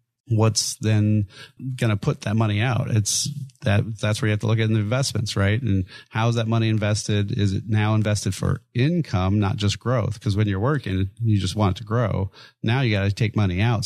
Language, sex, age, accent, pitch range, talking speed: English, male, 30-49, American, 100-120 Hz, 225 wpm